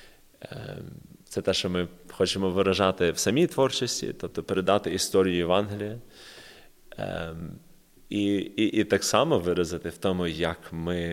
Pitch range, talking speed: 85-95 Hz, 125 wpm